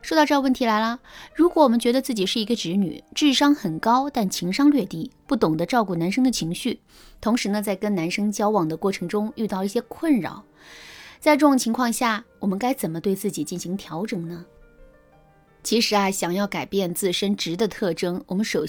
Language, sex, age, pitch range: Chinese, female, 20-39, 185-275 Hz